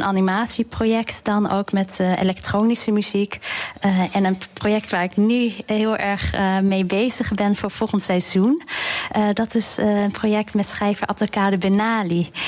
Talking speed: 160 wpm